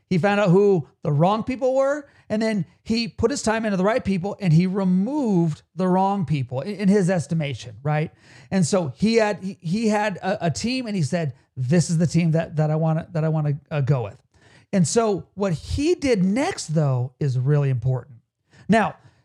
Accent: American